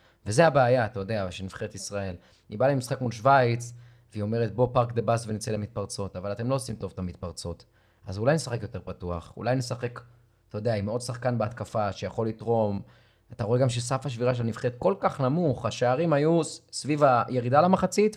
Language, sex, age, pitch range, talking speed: Hebrew, male, 30-49, 115-155 Hz, 195 wpm